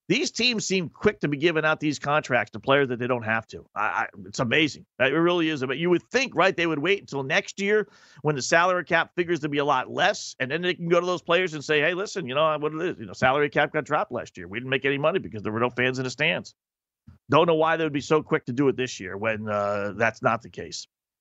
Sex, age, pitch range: male, 40-59, 125-165 Hz